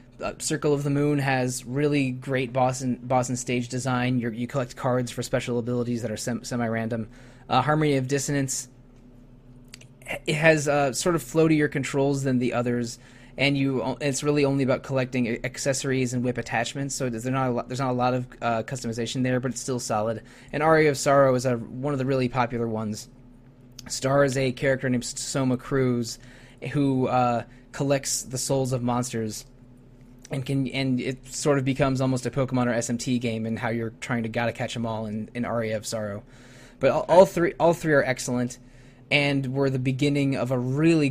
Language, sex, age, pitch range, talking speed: English, male, 20-39, 120-135 Hz, 195 wpm